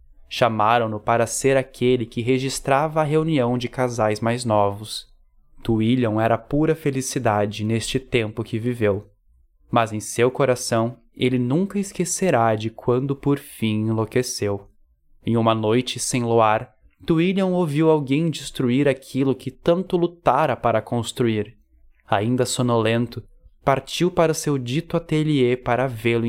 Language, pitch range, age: Portuguese, 110-135 Hz, 10-29